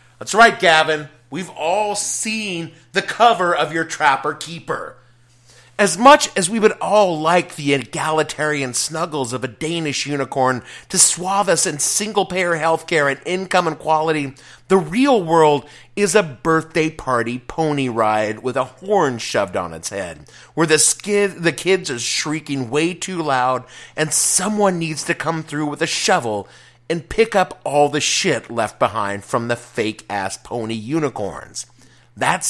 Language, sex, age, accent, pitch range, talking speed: English, male, 30-49, American, 125-180 Hz, 160 wpm